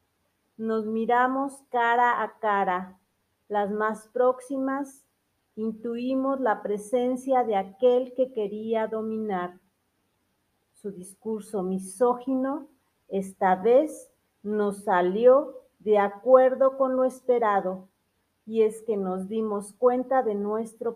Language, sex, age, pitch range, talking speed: Spanish, female, 40-59, 200-250 Hz, 105 wpm